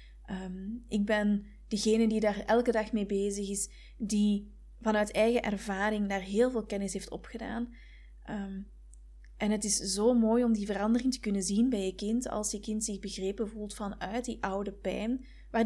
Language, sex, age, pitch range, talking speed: Dutch, female, 20-39, 200-235 Hz, 175 wpm